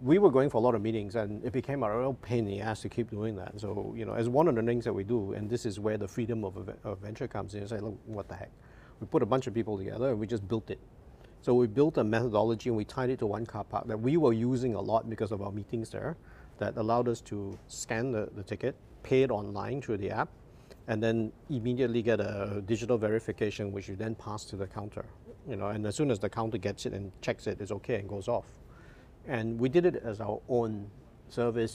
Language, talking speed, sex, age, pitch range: English, 265 wpm, male, 50-69, 105-125 Hz